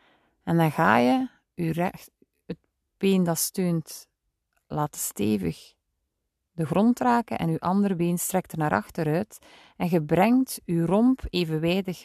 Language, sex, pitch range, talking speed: Dutch, female, 150-200 Hz, 135 wpm